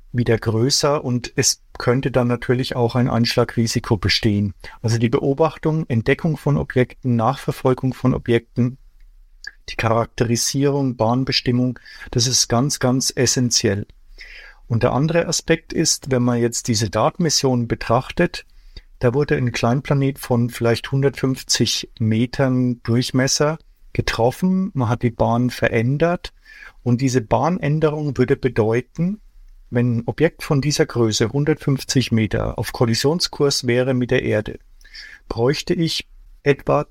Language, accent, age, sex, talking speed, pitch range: German, German, 50-69, male, 125 wpm, 120-140 Hz